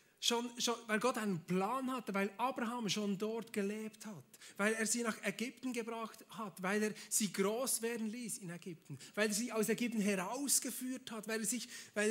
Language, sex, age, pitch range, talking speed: German, male, 30-49, 175-240 Hz, 195 wpm